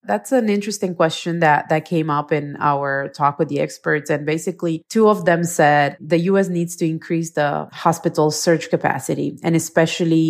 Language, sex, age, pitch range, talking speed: English, female, 30-49, 150-175 Hz, 180 wpm